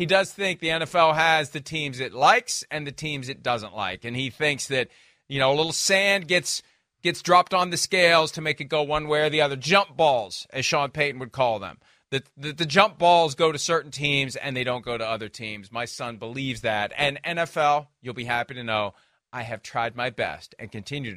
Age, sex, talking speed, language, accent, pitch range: 40-59, male, 230 wpm, English, American, 110-160 Hz